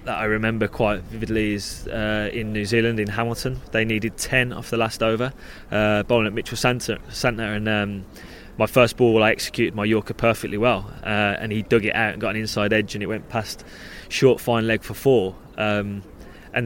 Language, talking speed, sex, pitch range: English, 210 wpm, male, 105-120 Hz